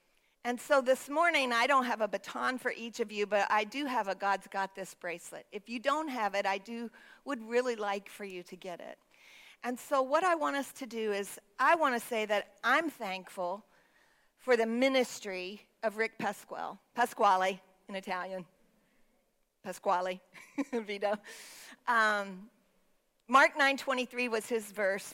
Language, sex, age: English, female, 50-69